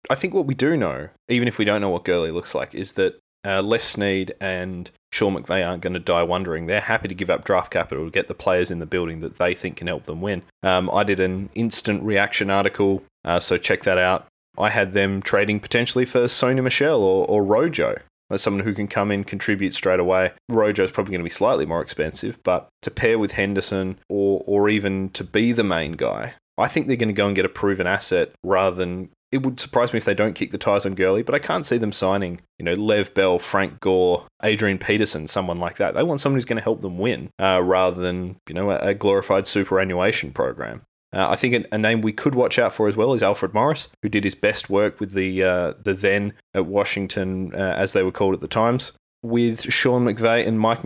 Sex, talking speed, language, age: male, 240 wpm, English, 20-39